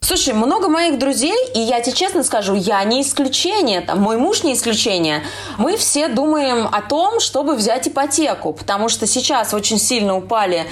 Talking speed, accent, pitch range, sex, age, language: 170 wpm, native, 215-300 Hz, female, 20-39, Russian